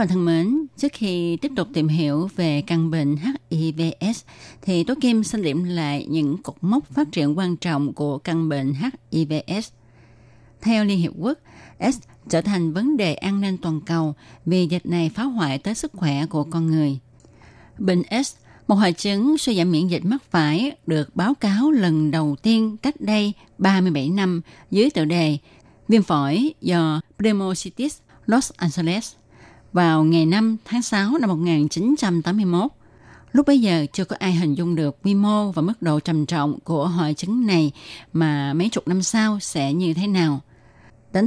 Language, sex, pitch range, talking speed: Vietnamese, female, 155-210 Hz, 175 wpm